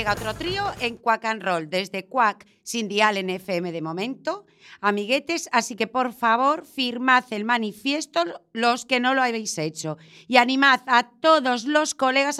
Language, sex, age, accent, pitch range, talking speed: Spanish, female, 40-59, Spanish, 190-275 Hz, 170 wpm